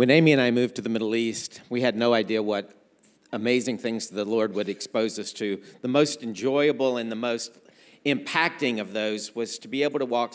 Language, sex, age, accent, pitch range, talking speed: English, male, 50-69, American, 115-145 Hz, 215 wpm